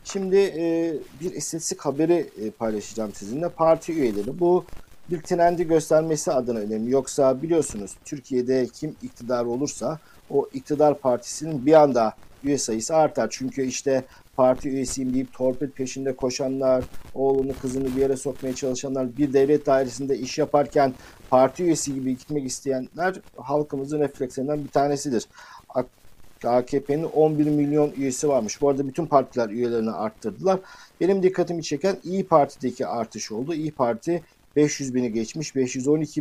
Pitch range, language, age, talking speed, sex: 130-155 Hz, Turkish, 50-69, 135 wpm, male